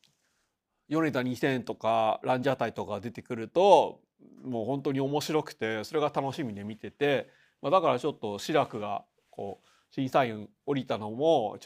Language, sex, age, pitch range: Japanese, male, 30-49, 120-160 Hz